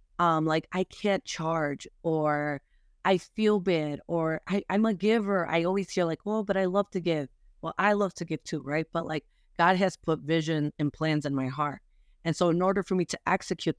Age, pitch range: 30-49, 150-170 Hz